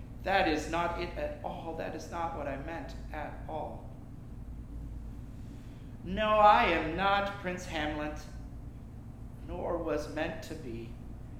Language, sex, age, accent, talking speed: English, male, 40-59, American, 130 wpm